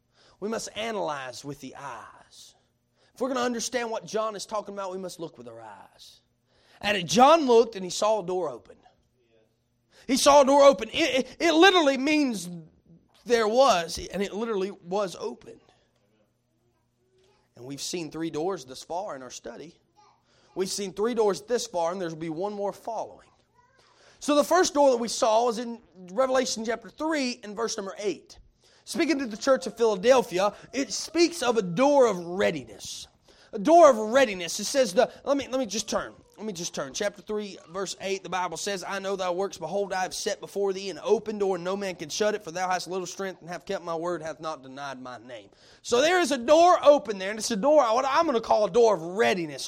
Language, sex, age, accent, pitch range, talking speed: English, male, 30-49, American, 185-265 Hz, 215 wpm